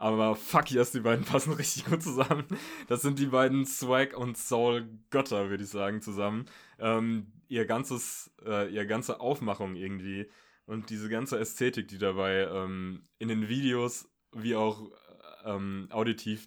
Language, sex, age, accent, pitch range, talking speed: German, male, 20-39, German, 100-120 Hz, 155 wpm